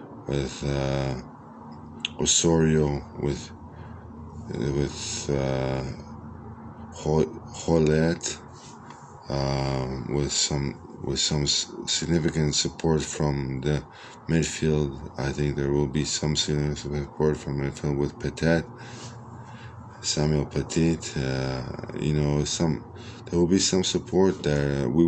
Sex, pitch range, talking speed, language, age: male, 75-90 Hz, 100 wpm, Hebrew, 20-39